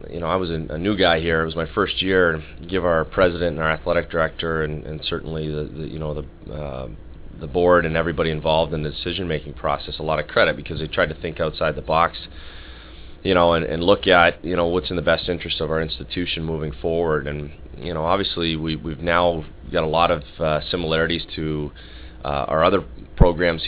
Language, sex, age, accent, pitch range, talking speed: English, male, 30-49, American, 75-85 Hz, 225 wpm